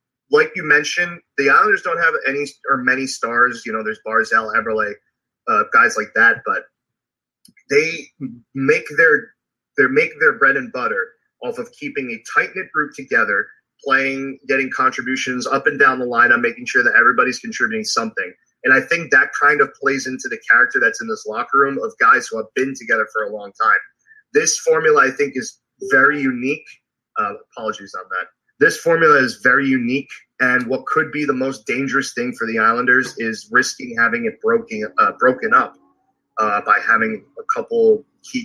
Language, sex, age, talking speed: English, male, 30-49, 180 wpm